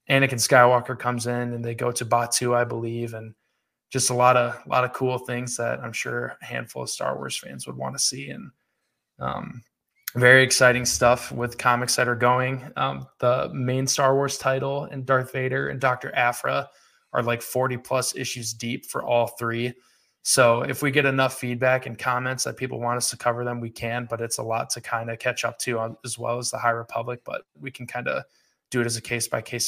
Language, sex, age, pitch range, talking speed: English, male, 20-39, 120-130 Hz, 220 wpm